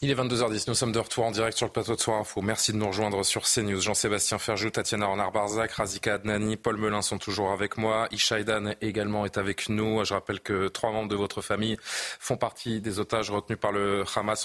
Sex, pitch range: male, 105-120 Hz